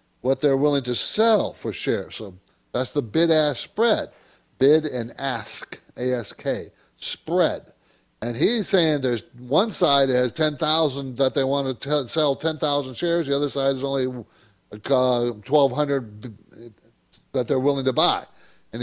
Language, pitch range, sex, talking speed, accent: English, 120-150 Hz, male, 155 wpm, American